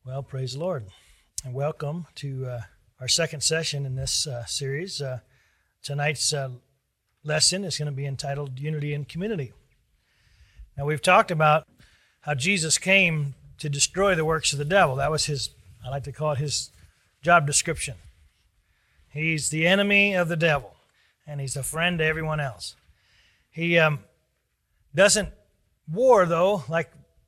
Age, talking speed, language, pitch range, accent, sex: 40-59, 155 wpm, English, 135-180 Hz, American, male